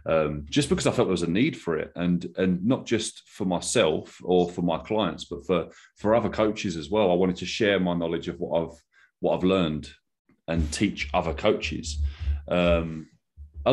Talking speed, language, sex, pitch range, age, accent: 200 wpm, English, male, 80-95 Hz, 30-49, British